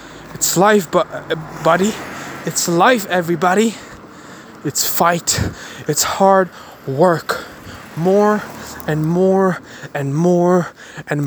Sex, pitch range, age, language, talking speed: male, 145-175 Hz, 20-39, English, 90 wpm